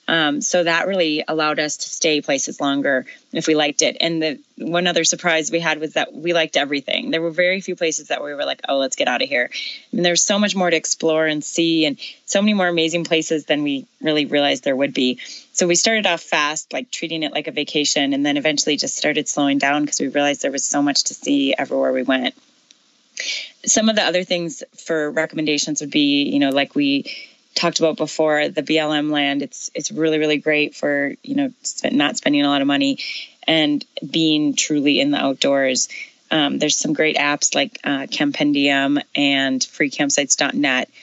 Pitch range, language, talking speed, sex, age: 145-215 Hz, English, 210 wpm, female, 20-39